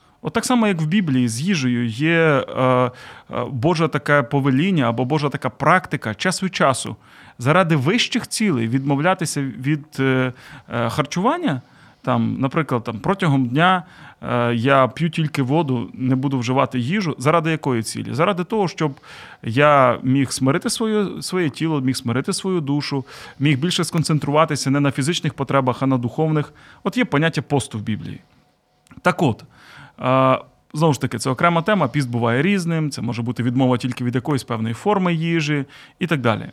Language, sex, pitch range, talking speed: Ukrainian, male, 130-170 Hz, 160 wpm